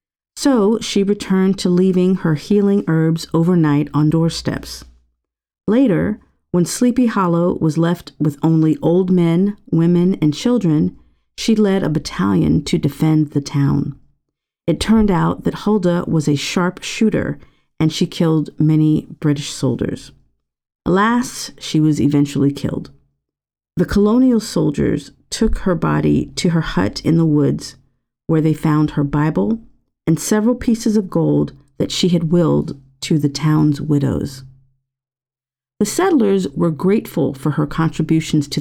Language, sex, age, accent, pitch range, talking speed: English, female, 50-69, American, 140-180 Hz, 140 wpm